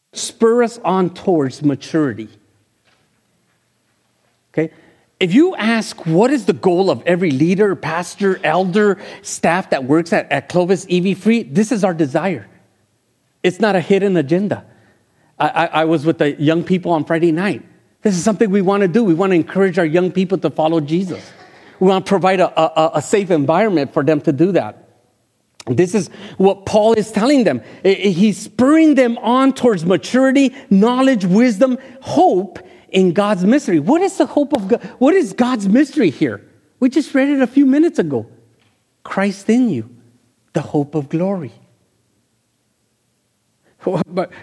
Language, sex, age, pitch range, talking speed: English, male, 50-69, 155-220 Hz, 165 wpm